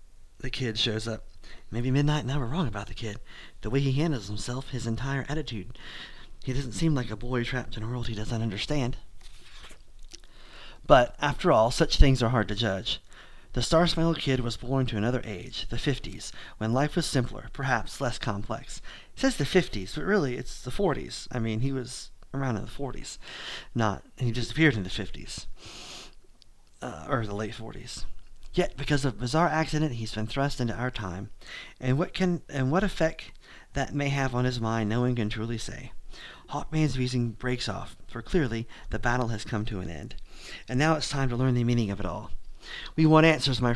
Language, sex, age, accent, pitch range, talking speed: English, male, 30-49, American, 110-145 Hz, 200 wpm